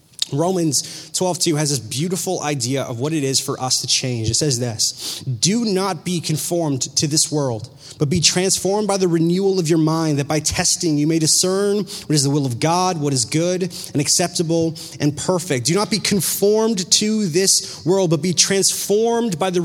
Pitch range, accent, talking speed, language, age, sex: 155-210 Hz, American, 195 wpm, English, 30-49, male